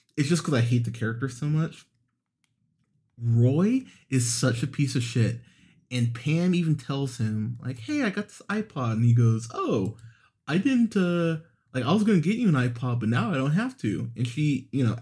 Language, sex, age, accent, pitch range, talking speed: English, male, 20-39, American, 115-150 Hz, 210 wpm